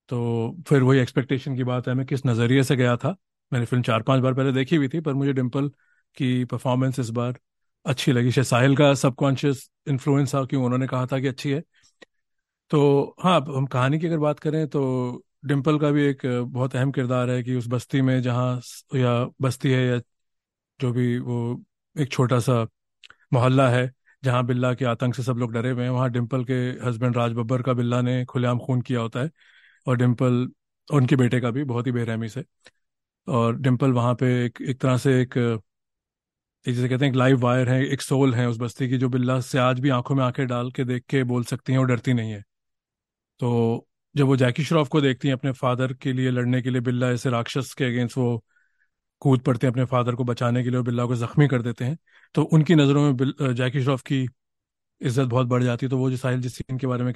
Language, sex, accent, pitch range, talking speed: Hindi, male, native, 125-135 Hz, 215 wpm